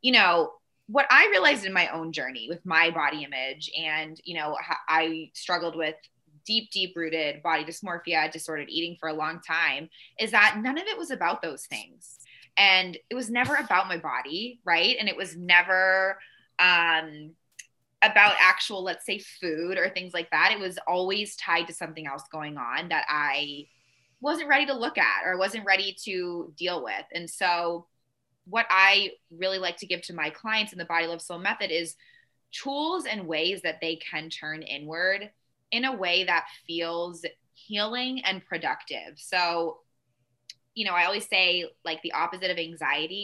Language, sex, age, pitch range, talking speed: English, female, 20-39, 160-195 Hz, 180 wpm